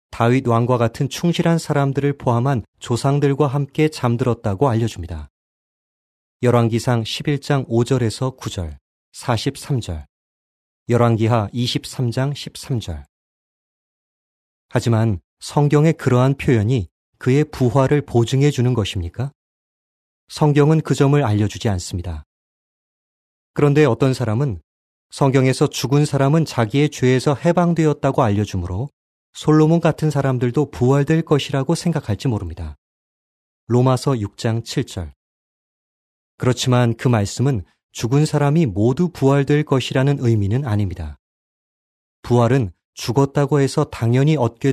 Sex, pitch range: male, 105-145 Hz